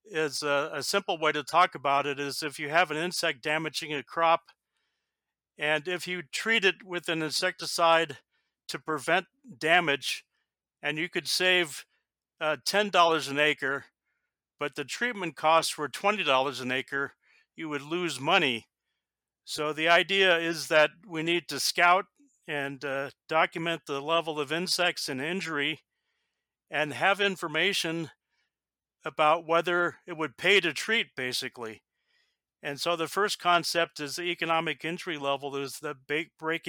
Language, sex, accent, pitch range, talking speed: English, male, American, 150-175 Hz, 145 wpm